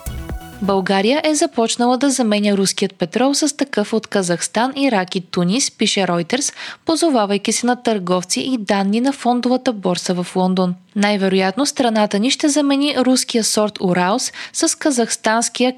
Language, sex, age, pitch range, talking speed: Bulgarian, female, 20-39, 185-260 Hz, 140 wpm